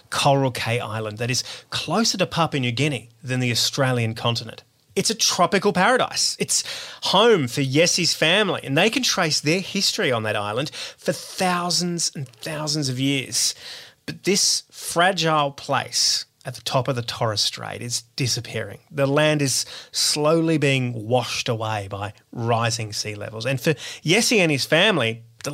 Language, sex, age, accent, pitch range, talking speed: English, male, 30-49, Australian, 120-165 Hz, 160 wpm